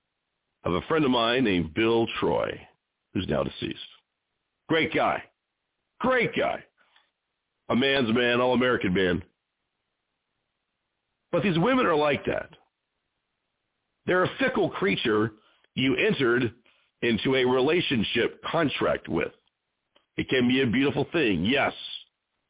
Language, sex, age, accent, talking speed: English, male, 50-69, American, 115 wpm